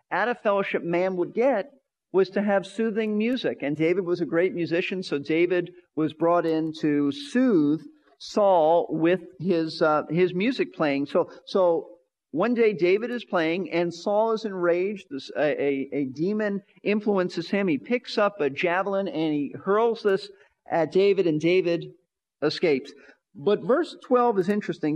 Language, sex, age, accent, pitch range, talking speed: English, male, 50-69, American, 165-220 Hz, 165 wpm